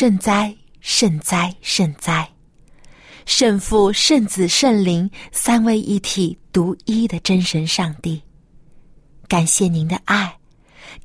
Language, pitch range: Chinese, 160-225 Hz